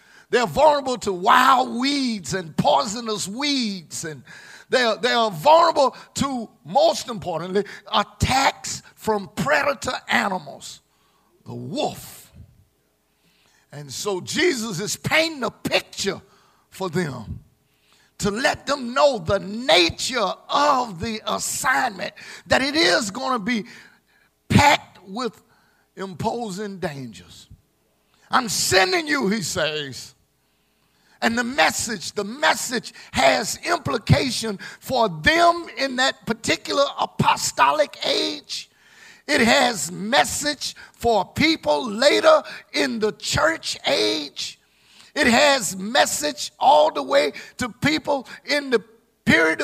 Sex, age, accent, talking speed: male, 50-69, American, 110 wpm